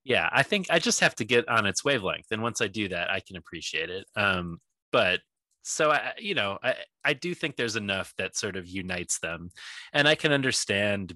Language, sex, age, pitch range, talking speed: English, male, 20-39, 95-125 Hz, 220 wpm